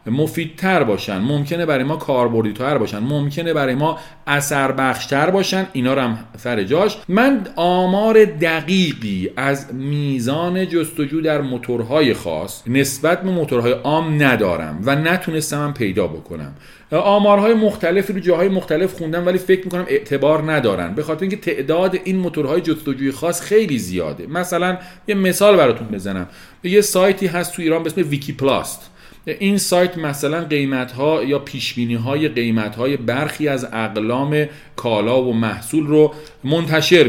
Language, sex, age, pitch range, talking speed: Persian, male, 40-59, 120-170 Hz, 140 wpm